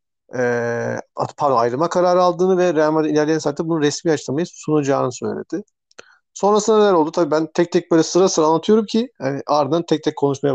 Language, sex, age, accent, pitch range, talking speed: Turkish, male, 40-59, native, 140-175 Hz, 180 wpm